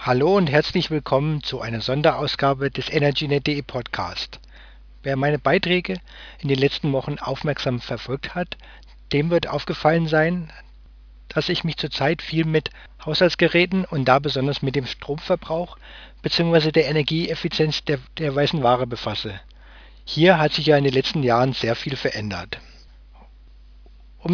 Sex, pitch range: male, 120-160 Hz